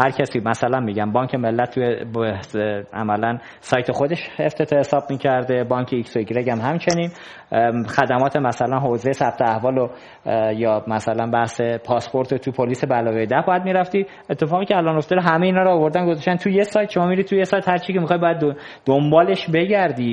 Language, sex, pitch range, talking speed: Persian, male, 125-165 Hz, 165 wpm